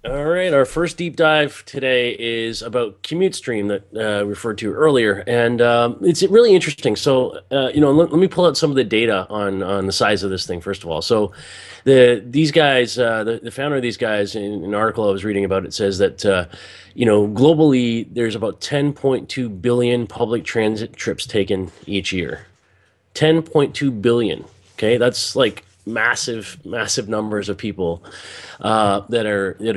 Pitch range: 105-130 Hz